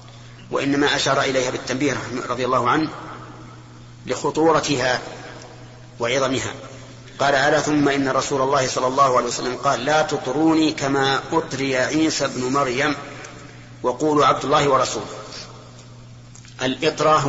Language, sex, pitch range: Arabic, male, 120-145 Hz